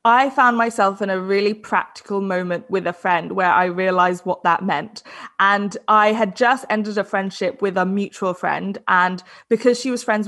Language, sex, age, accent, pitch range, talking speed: English, female, 20-39, British, 190-250 Hz, 195 wpm